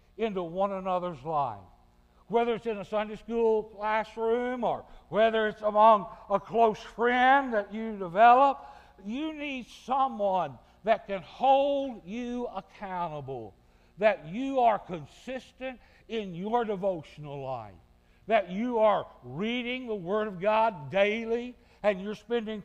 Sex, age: male, 60-79